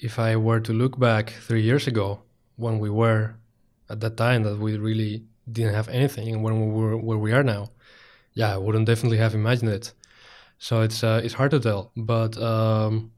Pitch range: 110-120 Hz